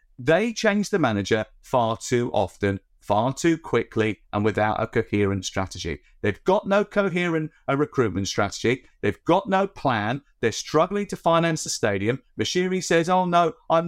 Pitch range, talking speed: 125-160 Hz, 160 wpm